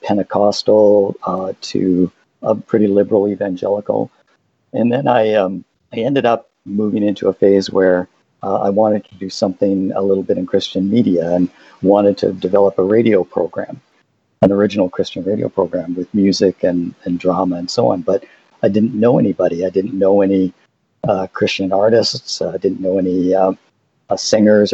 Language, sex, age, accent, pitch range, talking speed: English, male, 50-69, American, 95-105 Hz, 165 wpm